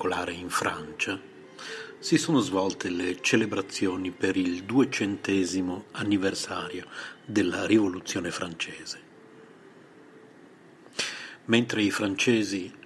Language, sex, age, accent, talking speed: Italian, male, 50-69, native, 80 wpm